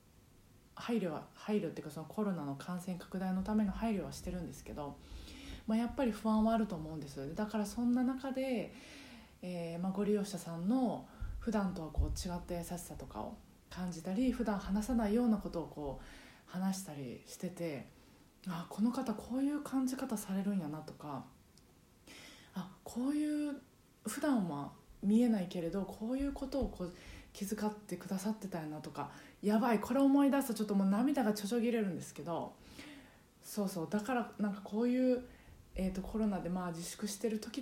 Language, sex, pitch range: Japanese, female, 180-230 Hz